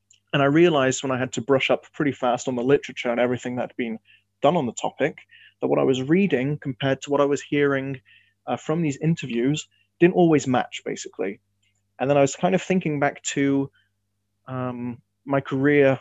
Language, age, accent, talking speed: English, 20-39, British, 200 wpm